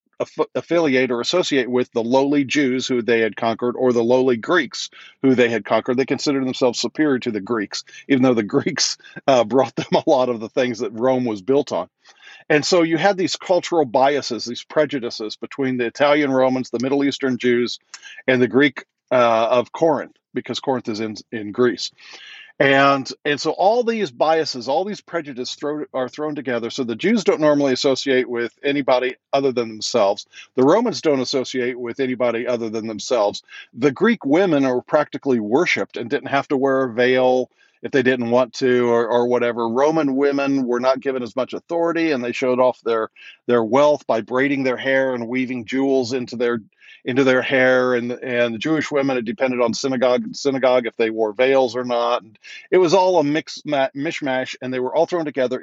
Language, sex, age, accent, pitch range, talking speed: English, male, 50-69, American, 120-145 Hz, 195 wpm